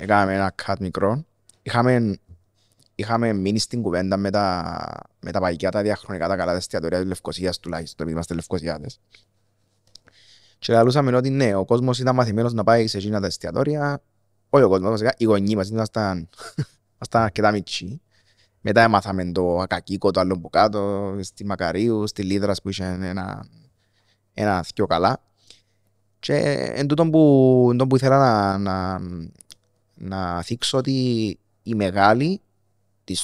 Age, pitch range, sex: 20-39, 95-115 Hz, male